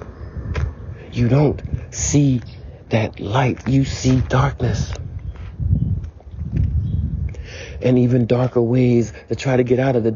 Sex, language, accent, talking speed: male, English, American, 110 wpm